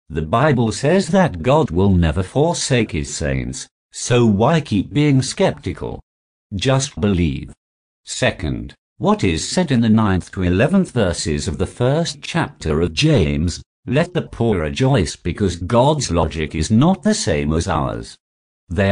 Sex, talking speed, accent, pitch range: male, 150 wpm, British, 75-125 Hz